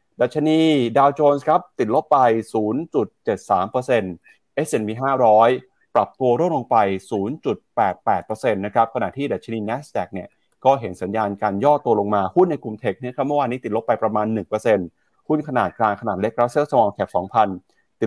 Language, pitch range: Thai, 105-140 Hz